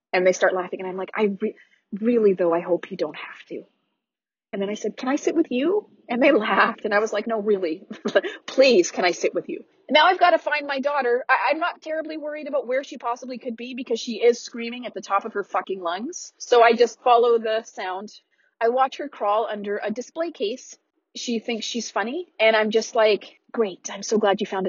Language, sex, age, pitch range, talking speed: English, female, 30-49, 215-290 Hz, 235 wpm